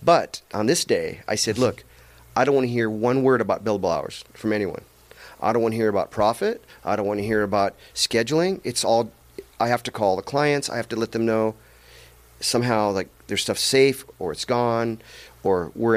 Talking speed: 215 wpm